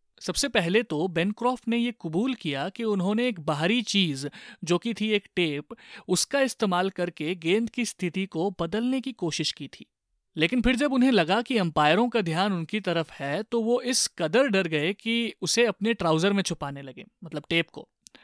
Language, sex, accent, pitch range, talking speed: Hindi, male, native, 165-230 Hz, 190 wpm